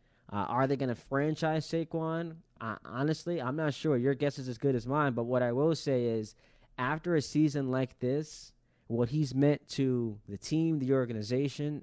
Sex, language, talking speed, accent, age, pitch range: male, English, 195 wpm, American, 20-39, 115-140 Hz